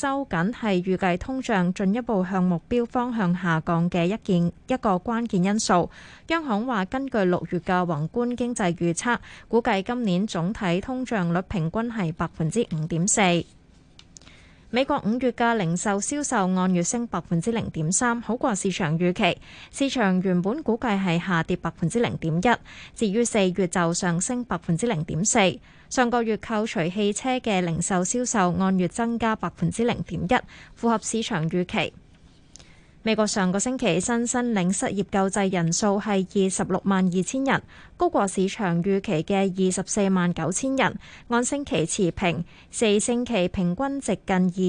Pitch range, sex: 180-240 Hz, female